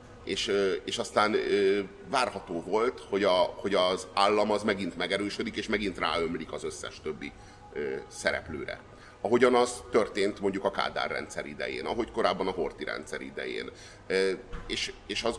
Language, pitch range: Hungarian, 100-140 Hz